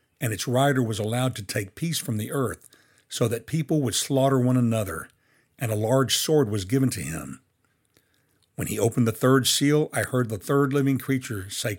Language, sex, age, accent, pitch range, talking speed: English, male, 60-79, American, 110-140 Hz, 200 wpm